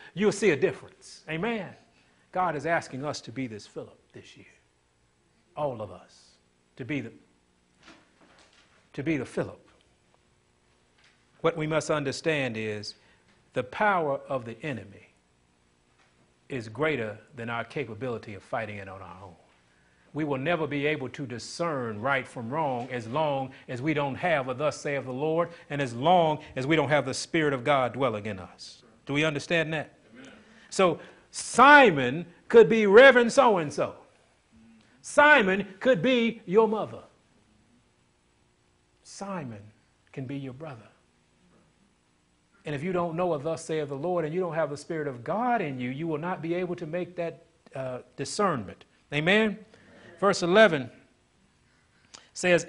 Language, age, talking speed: English, 40-59, 155 wpm